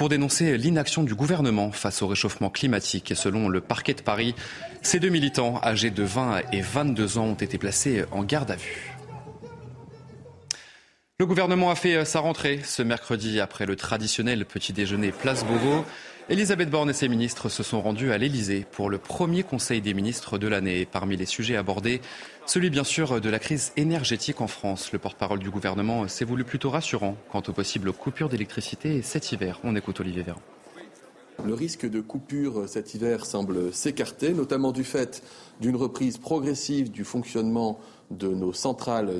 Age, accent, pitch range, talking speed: 30-49, French, 105-140 Hz, 175 wpm